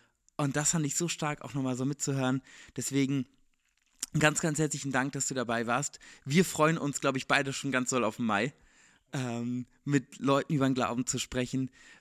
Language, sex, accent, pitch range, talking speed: German, male, German, 130-160 Hz, 195 wpm